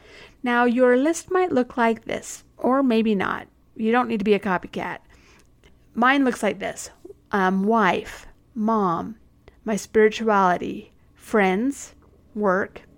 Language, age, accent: English, 50-69, American